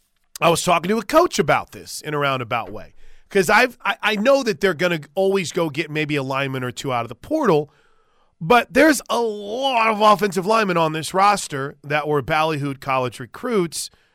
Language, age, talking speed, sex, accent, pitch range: English, 30-49, 205 wpm, male, American, 135-180 Hz